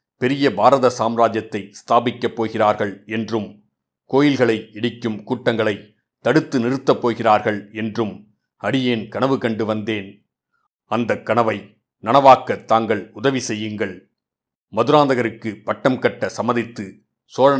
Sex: male